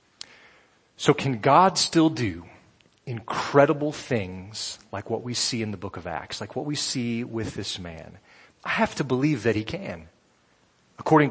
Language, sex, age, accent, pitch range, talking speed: English, male, 40-59, American, 110-140 Hz, 165 wpm